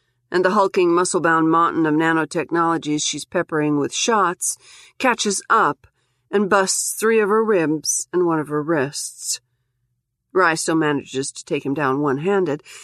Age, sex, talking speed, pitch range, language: 50-69, female, 150 wpm, 130-180 Hz, English